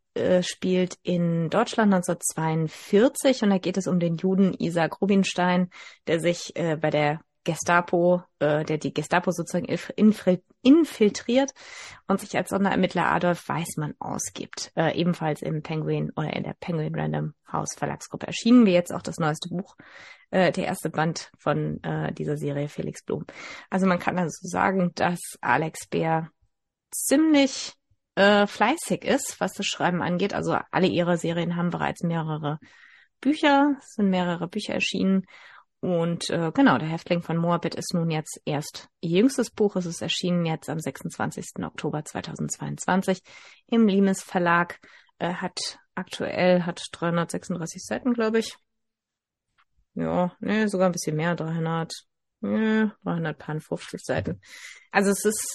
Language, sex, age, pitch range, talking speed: German, female, 30-49, 160-195 Hz, 145 wpm